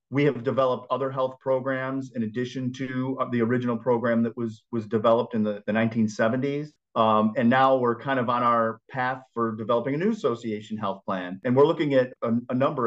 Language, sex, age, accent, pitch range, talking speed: English, male, 40-59, American, 110-135 Hz, 200 wpm